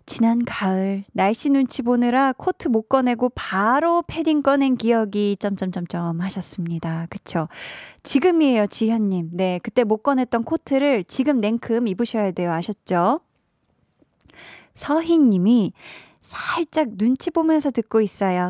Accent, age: native, 20-39